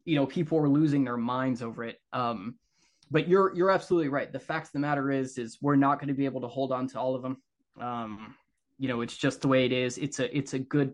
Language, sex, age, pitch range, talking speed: English, male, 20-39, 130-145 Hz, 270 wpm